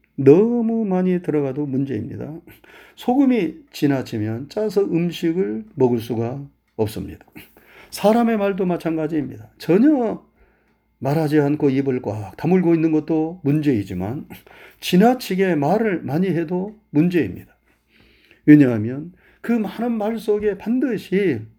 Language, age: Korean, 40-59